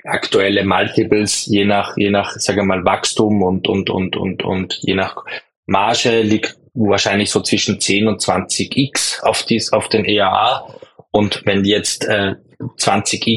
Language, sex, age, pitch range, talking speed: German, male, 20-39, 100-115 Hz, 150 wpm